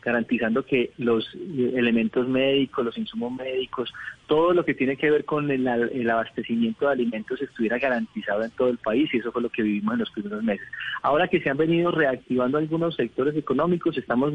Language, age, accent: Spanish, 30-49, Colombian